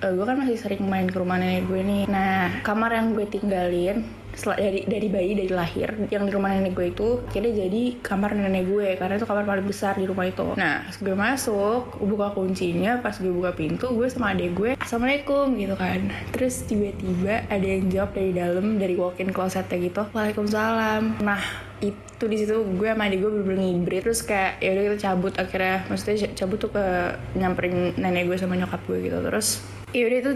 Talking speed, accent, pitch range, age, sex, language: 190 wpm, native, 185-220 Hz, 20-39, female, Indonesian